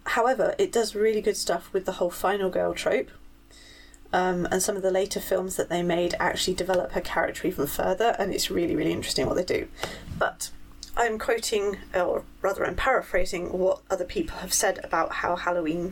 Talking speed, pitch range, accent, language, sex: 190 wpm, 185-220 Hz, British, English, female